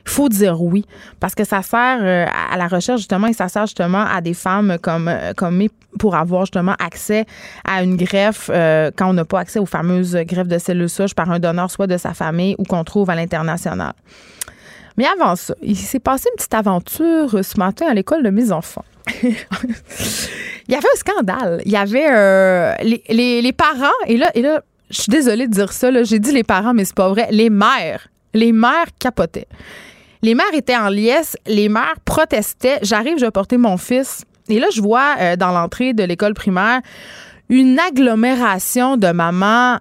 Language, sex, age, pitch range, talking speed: French, female, 20-39, 185-240 Hz, 200 wpm